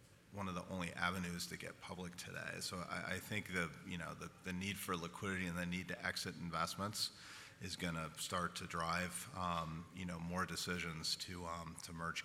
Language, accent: English, American